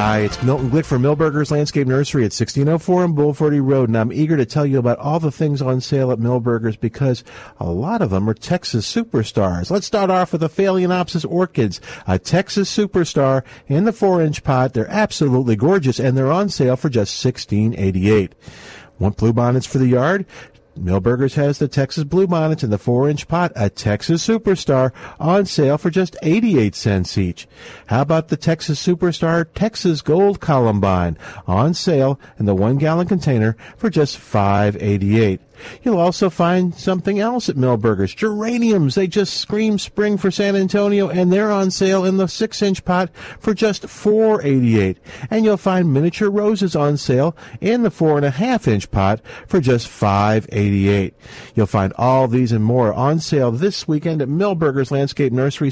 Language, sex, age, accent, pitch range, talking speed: English, male, 50-69, American, 120-185 Hz, 180 wpm